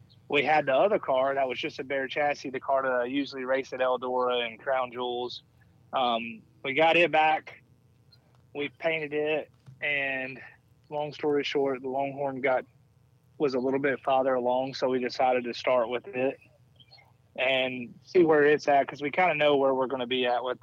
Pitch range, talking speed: 125-140 Hz, 195 wpm